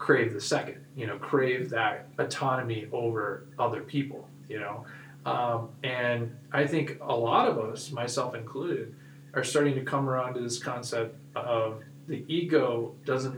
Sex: male